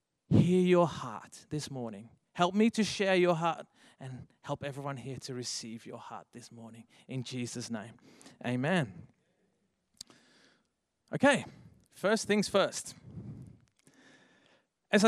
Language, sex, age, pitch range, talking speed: English, male, 30-49, 130-190 Hz, 120 wpm